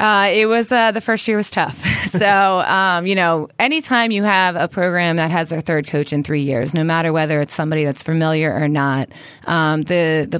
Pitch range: 145-175 Hz